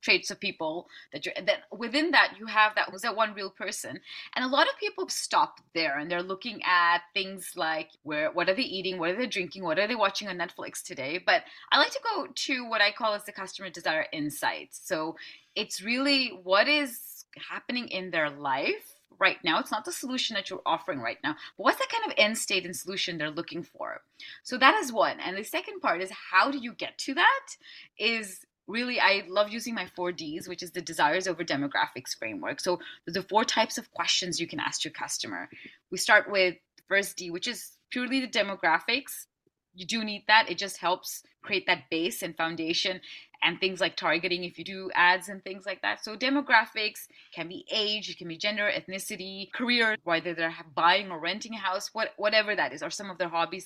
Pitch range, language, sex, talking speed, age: 180-235 Hz, English, female, 215 wpm, 20-39